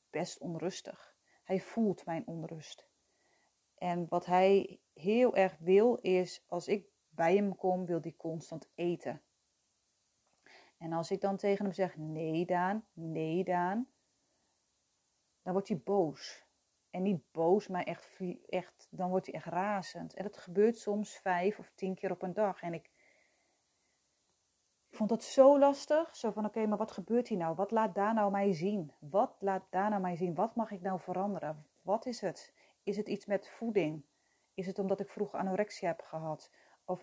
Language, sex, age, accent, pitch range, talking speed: Dutch, female, 30-49, Dutch, 175-210 Hz, 175 wpm